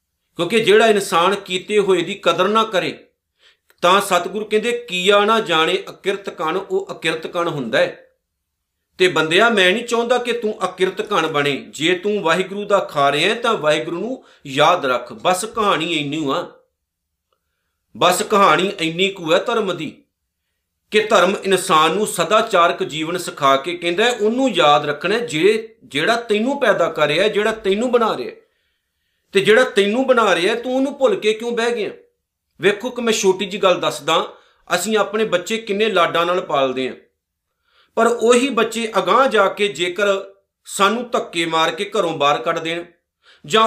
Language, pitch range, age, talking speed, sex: Punjabi, 175-230 Hz, 50-69, 160 wpm, male